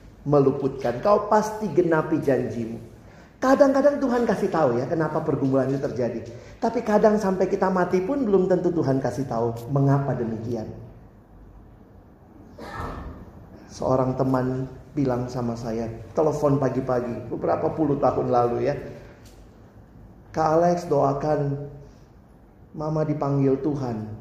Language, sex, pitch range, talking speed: Indonesian, male, 110-160 Hz, 110 wpm